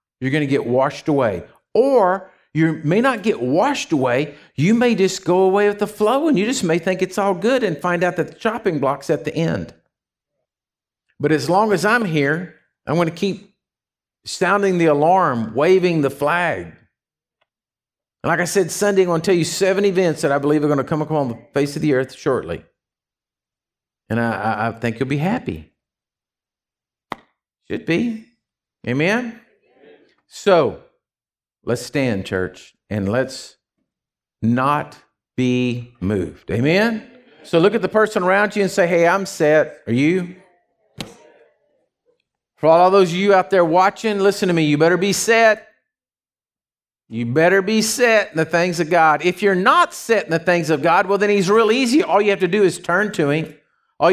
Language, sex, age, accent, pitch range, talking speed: English, male, 50-69, American, 150-200 Hz, 180 wpm